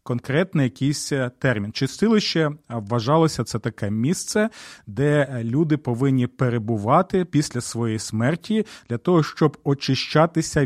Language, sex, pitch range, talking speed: Ukrainian, male, 120-165 Hz, 105 wpm